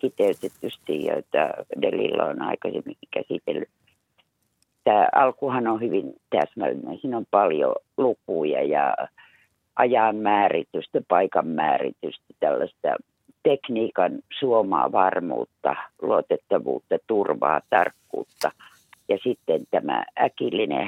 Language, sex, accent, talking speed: Finnish, female, native, 90 wpm